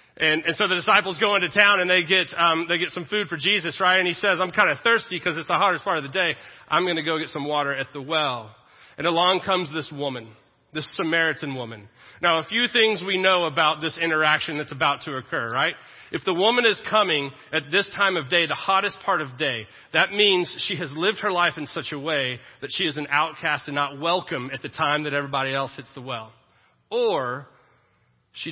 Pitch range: 155-200 Hz